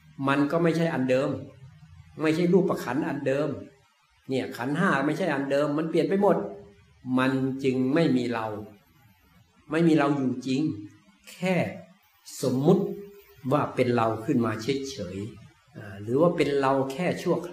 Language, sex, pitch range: Thai, male, 115-150 Hz